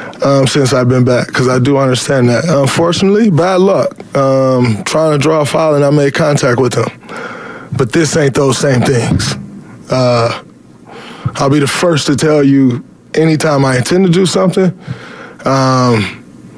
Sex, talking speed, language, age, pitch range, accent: male, 165 wpm, English, 20-39, 120-145 Hz, American